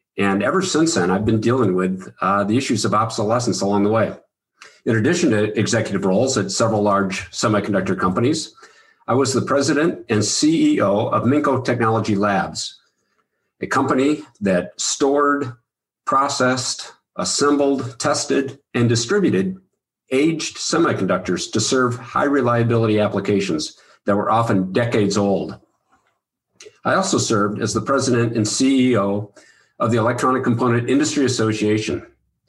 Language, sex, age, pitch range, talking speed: English, male, 50-69, 105-135 Hz, 130 wpm